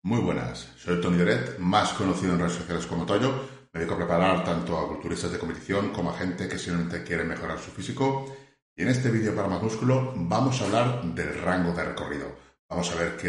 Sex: male